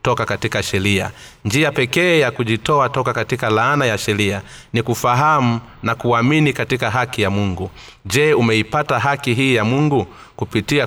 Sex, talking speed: male, 150 wpm